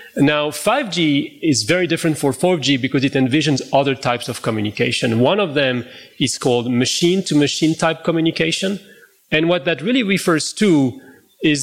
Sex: male